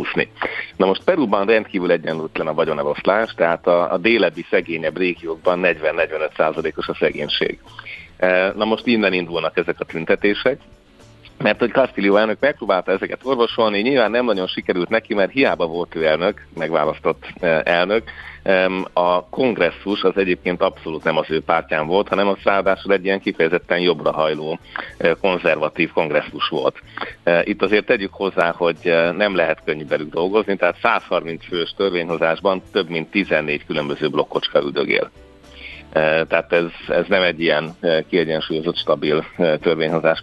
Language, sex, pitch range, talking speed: Hungarian, male, 85-100 Hz, 135 wpm